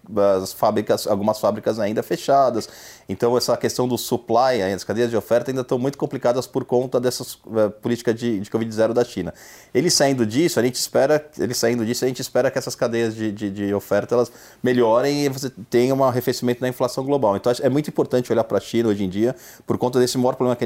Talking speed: 220 wpm